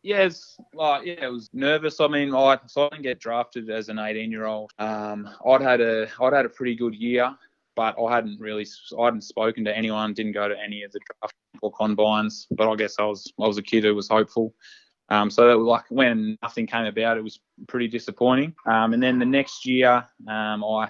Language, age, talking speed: English, 20-39, 230 wpm